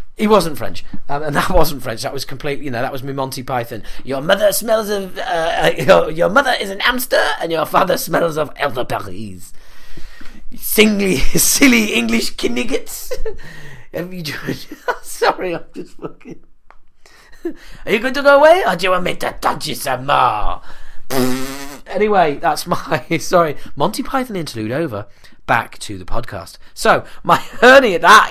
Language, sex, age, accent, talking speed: English, male, 30-49, British, 165 wpm